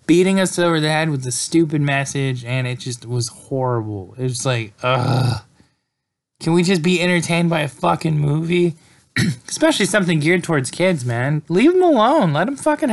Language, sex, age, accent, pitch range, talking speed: English, male, 20-39, American, 125-175 Hz, 180 wpm